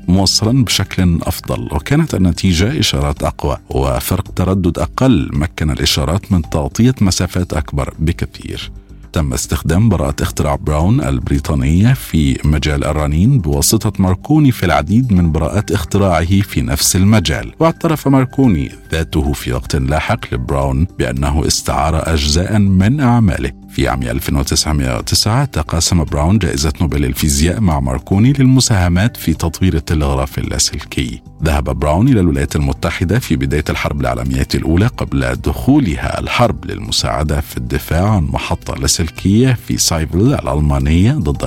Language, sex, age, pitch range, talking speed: Arabic, male, 50-69, 75-105 Hz, 125 wpm